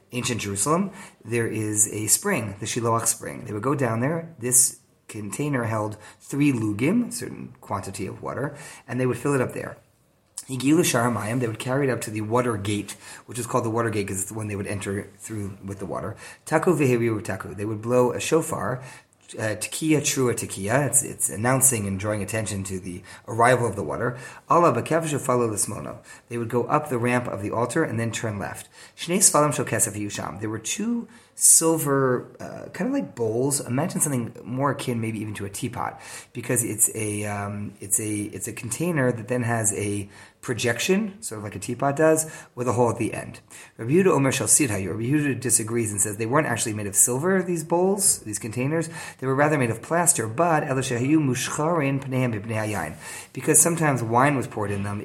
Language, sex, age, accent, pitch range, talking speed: English, male, 30-49, American, 105-140 Hz, 190 wpm